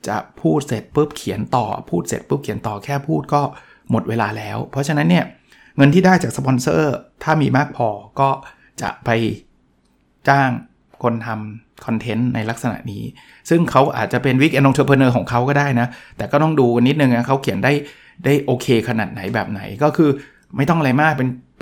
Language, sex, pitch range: Thai, male, 120-150 Hz